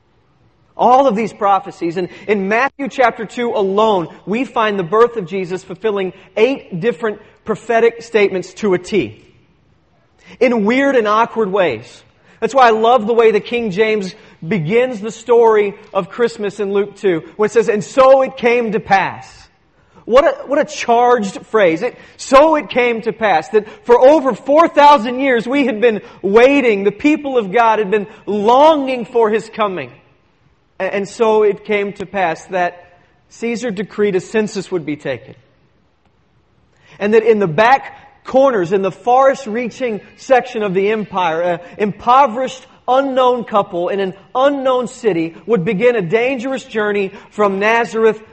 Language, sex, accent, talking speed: English, male, American, 160 wpm